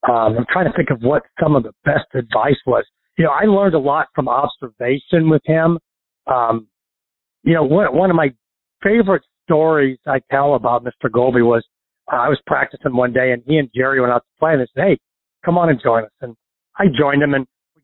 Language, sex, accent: English, male, American